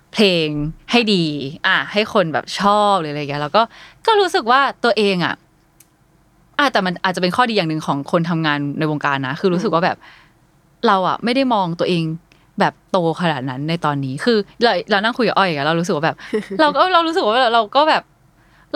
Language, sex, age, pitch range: Thai, female, 20-39, 170-255 Hz